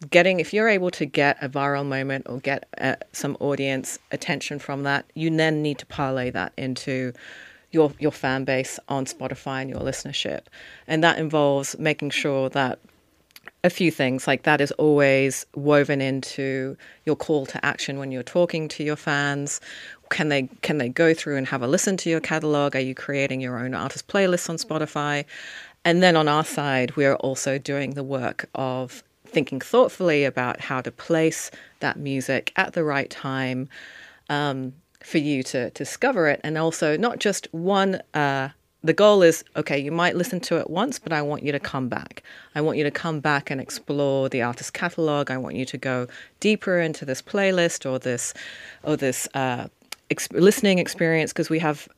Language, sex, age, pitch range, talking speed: English, female, 30-49, 135-160 Hz, 190 wpm